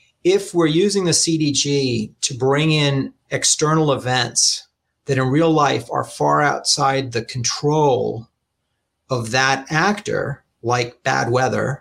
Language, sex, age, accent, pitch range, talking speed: English, male, 40-59, American, 125-155 Hz, 125 wpm